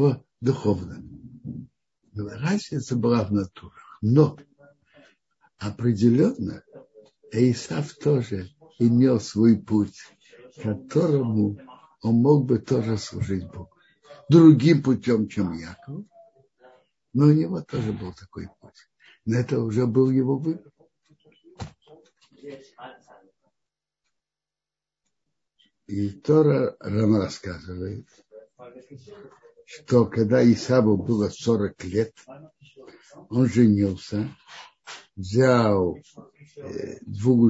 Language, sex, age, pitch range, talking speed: Russian, male, 60-79, 110-145 Hz, 80 wpm